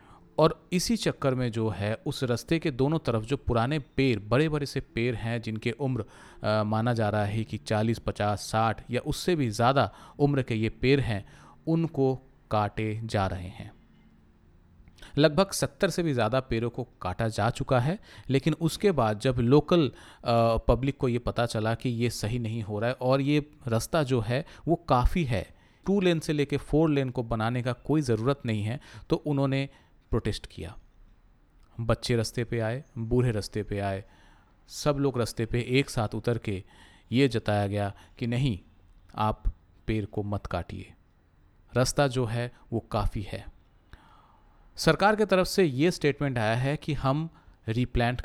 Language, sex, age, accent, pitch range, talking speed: Hindi, male, 40-59, native, 105-140 Hz, 175 wpm